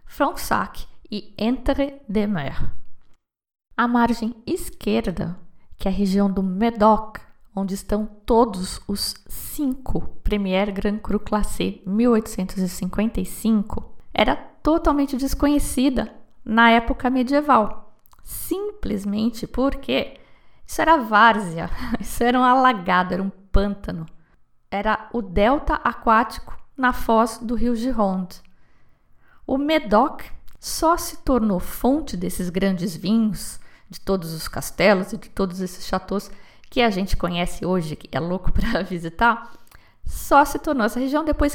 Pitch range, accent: 200-260 Hz, Brazilian